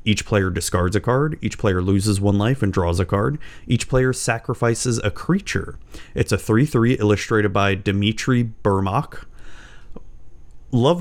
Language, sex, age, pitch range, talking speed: English, male, 30-49, 95-120 Hz, 155 wpm